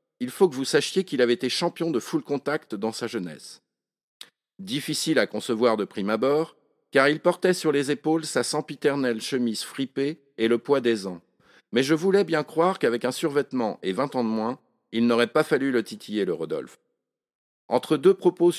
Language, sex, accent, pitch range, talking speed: French, male, French, 125-170 Hz, 195 wpm